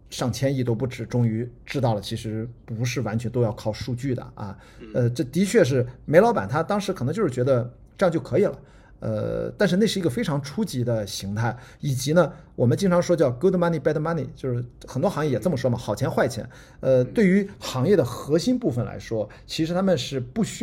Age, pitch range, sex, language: 50-69, 120-175 Hz, male, Chinese